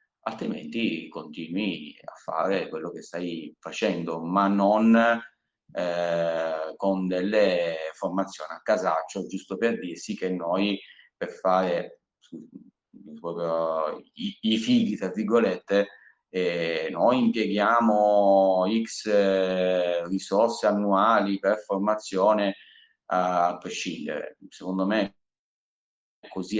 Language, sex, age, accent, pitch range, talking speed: Italian, male, 30-49, native, 90-105 Hz, 95 wpm